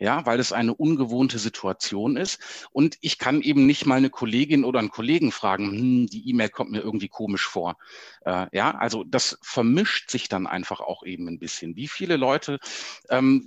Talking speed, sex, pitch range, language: 190 wpm, male, 115-150 Hz, German